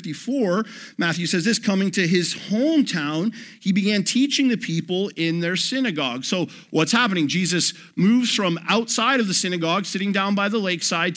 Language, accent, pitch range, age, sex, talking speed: English, American, 170-210 Hz, 50-69, male, 165 wpm